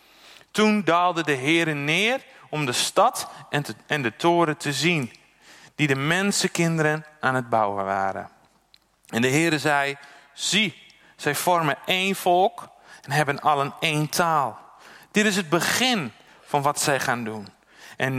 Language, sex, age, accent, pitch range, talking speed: Dutch, male, 40-59, Dutch, 130-170 Hz, 150 wpm